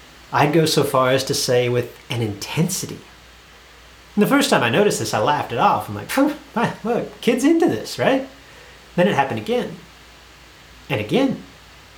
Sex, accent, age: male, American, 30-49